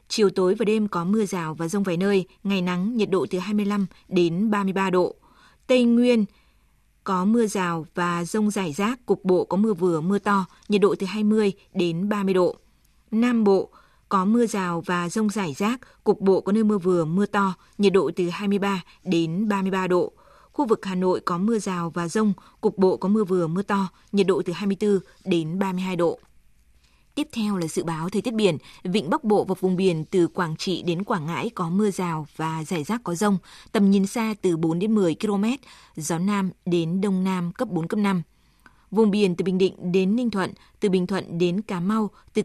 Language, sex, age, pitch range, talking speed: Vietnamese, female, 20-39, 180-210 Hz, 210 wpm